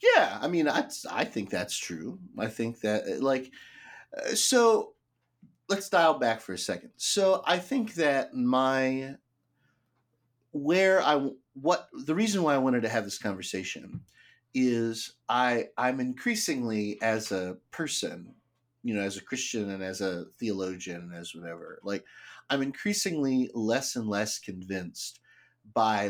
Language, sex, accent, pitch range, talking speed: English, male, American, 110-135 Hz, 145 wpm